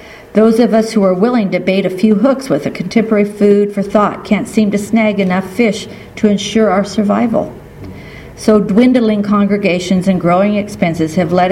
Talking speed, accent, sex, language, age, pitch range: 180 wpm, American, female, English, 50-69, 175-220 Hz